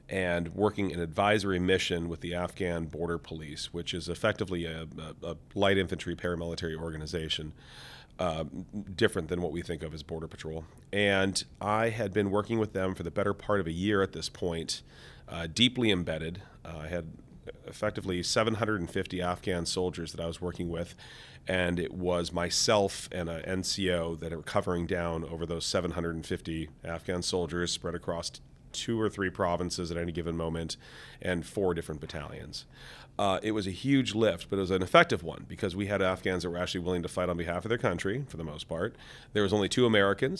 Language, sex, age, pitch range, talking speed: English, male, 40-59, 85-100 Hz, 190 wpm